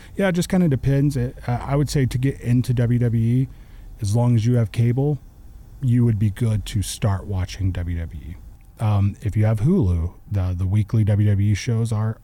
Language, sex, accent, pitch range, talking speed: English, male, American, 95-115 Hz, 195 wpm